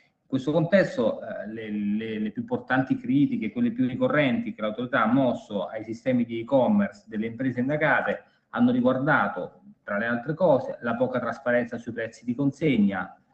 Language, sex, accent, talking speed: Italian, male, native, 160 wpm